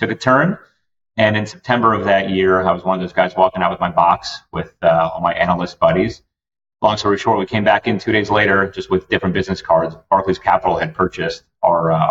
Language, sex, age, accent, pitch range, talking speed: English, male, 30-49, American, 95-105 Hz, 235 wpm